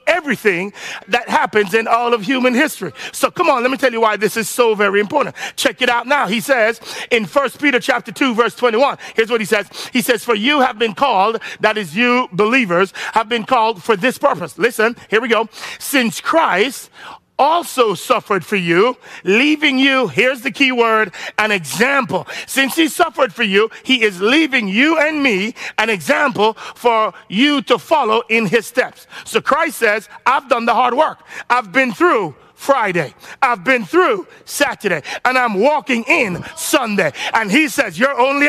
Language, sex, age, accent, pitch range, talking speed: English, male, 50-69, American, 220-275 Hz, 185 wpm